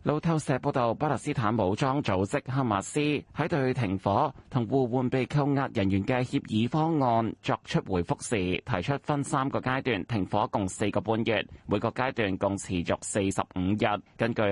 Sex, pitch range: male, 100-135 Hz